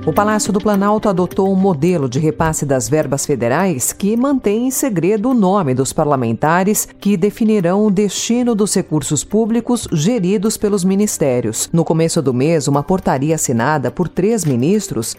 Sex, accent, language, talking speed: female, Brazilian, Portuguese, 160 wpm